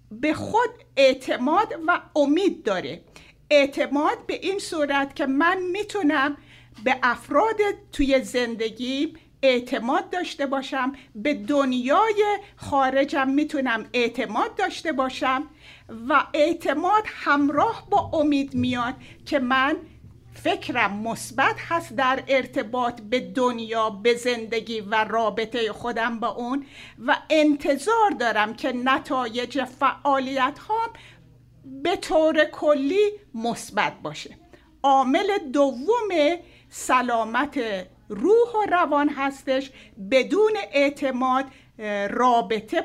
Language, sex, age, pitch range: Persian, female, 50-69, 240-315 Hz